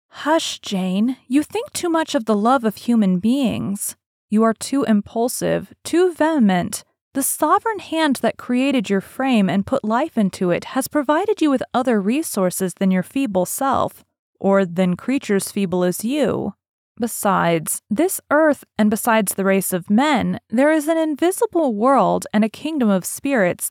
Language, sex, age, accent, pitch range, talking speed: English, female, 30-49, American, 195-280 Hz, 165 wpm